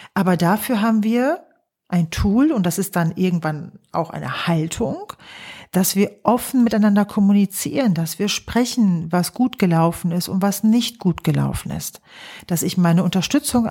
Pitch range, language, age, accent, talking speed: 170-210 Hz, German, 40-59, German, 160 wpm